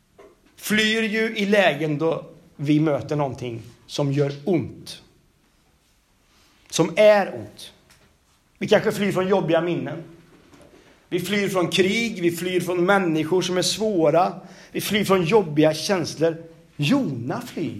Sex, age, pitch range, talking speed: male, 40-59, 140-220 Hz, 130 wpm